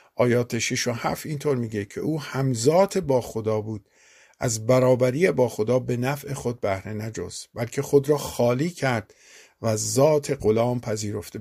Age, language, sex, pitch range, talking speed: 50-69, Persian, male, 110-145 Hz, 160 wpm